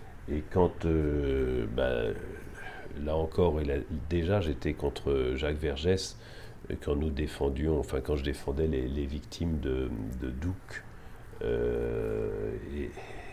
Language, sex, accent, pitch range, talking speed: French, male, French, 70-85 Hz, 125 wpm